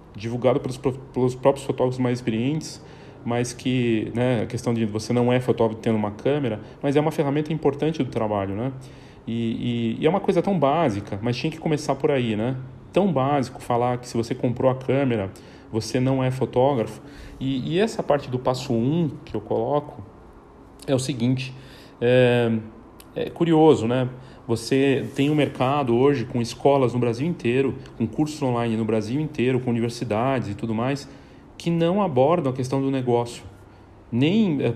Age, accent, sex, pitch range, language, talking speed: 40-59, Brazilian, male, 115-155 Hz, Portuguese, 175 wpm